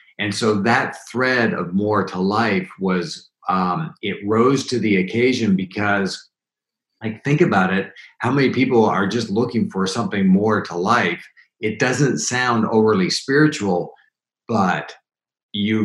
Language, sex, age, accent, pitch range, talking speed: English, male, 40-59, American, 95-135 Hz, 145 wpm